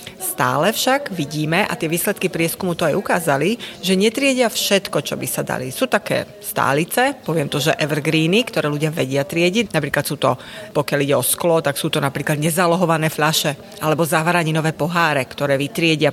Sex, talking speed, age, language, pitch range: female, 160 wpm, 30-49, Slovak, 155-215 Hz